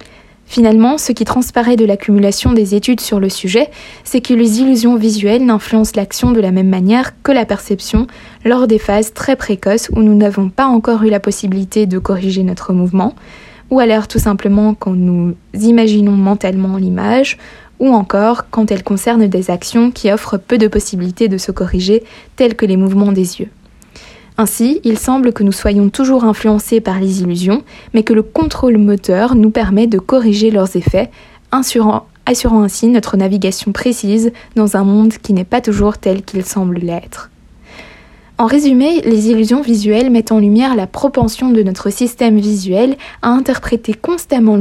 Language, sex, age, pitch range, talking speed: French, female, 20-39, 200-240 Hz, 170 wpm